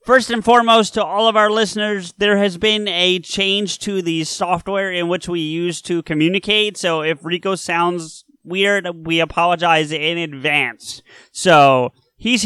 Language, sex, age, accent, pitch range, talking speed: English, male, 30-49, American, 145-190 Hz, 160 wpm